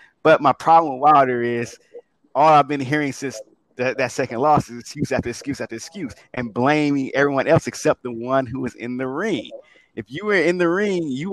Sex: male